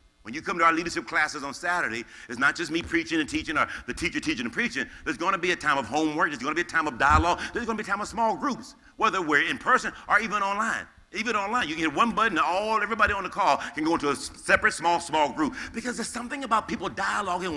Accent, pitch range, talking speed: American, 170-250 Hz, 265 wpm